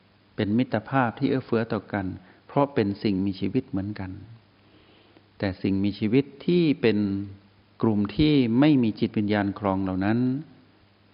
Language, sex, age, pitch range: Thai, male, 60-79, 100-130 Hz